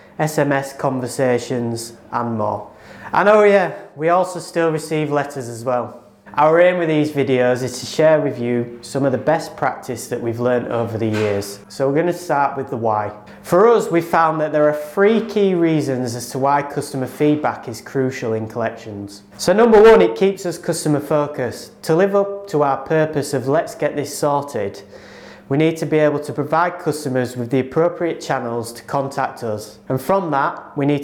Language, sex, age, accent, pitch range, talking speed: English, male, 30-49, British, 125-155 Hz, 195 wpm